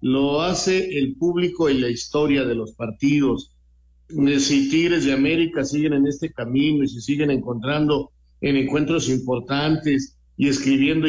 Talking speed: 145 wpm